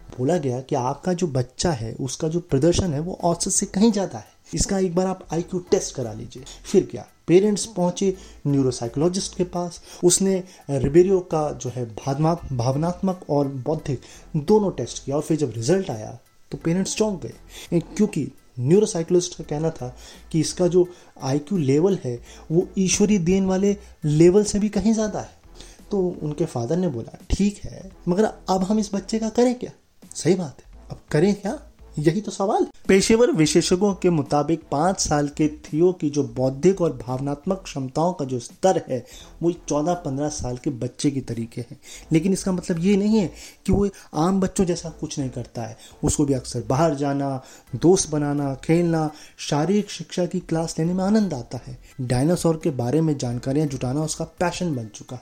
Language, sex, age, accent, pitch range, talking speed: Hindi, male, 30-49, native, 140-185 Hz, 180 wpm